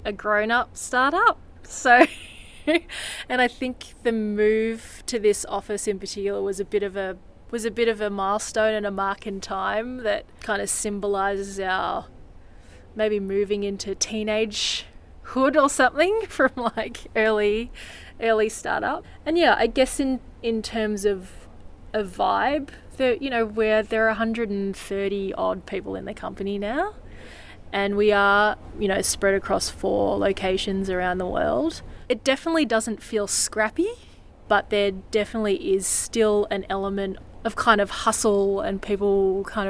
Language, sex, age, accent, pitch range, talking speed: English, female, 20-39, Australian, 195-225 Hz, 155 wpm